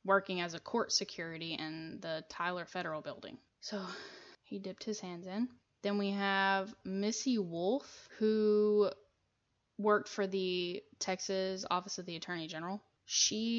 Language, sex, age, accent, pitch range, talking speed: English, female, 10-29, American, 185-215 Hz, 140 wpm